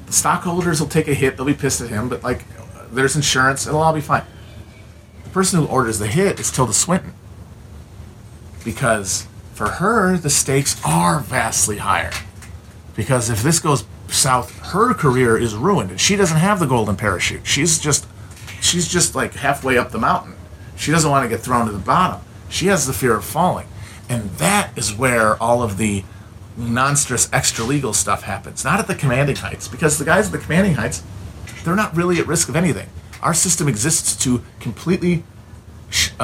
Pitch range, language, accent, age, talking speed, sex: 100-140 Hz, English, American, 40-59, 185 wpm, male